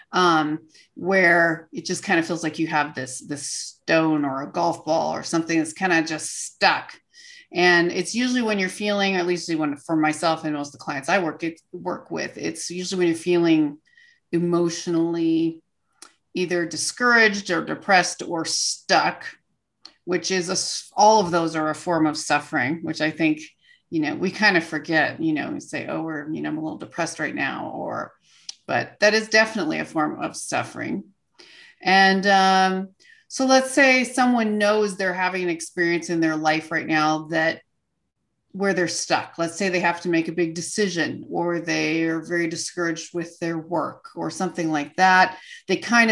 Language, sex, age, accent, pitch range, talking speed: English, female, 30-49, American, 160-200 Hz, 180 wpm